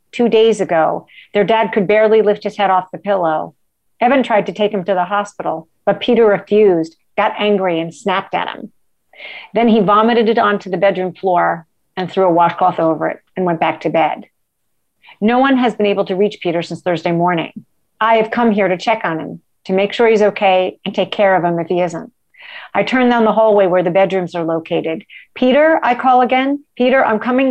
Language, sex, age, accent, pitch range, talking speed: English, female, 50-69, American, 180-220 Hz, 215 wpm